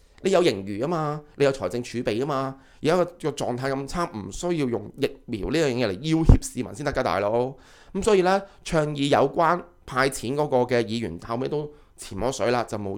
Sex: male